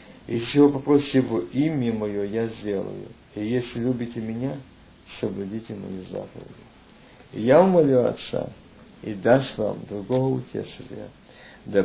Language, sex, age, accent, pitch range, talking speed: Russian, male, 50-69, native, 100-130 Hz, 125 wpm